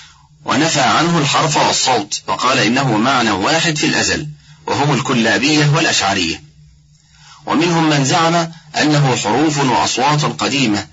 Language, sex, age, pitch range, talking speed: Arabic, male, 30-49, 120-150 Hz, 110 wpm